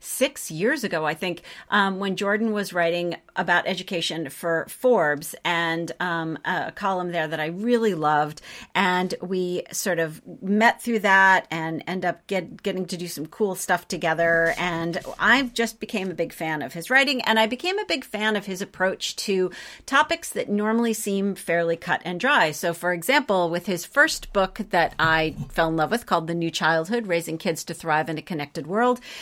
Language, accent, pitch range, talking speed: English, American, 160-210 Hz, 190 wpm